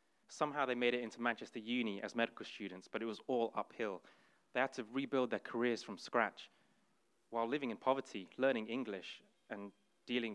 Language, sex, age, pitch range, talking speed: English, male, 20-39, 110-135 Hz, 180 wpm